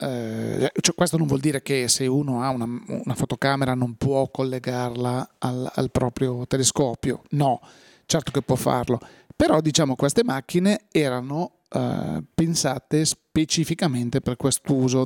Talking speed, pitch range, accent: 135 wpm, 130-155 Hz, native